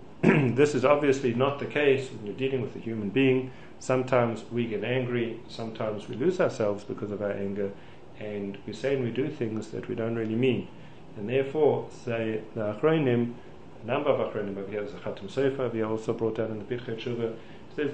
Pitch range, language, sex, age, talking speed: 110-130 Hz, English, male, 40-59, 190 wpm